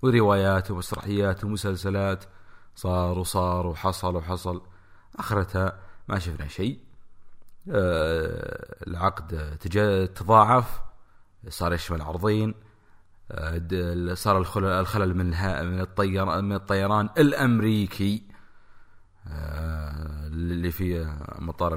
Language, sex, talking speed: English, male, 65 wpm